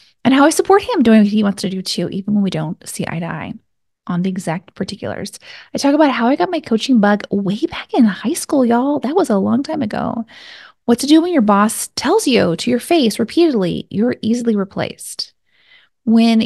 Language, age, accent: English, 20-39, American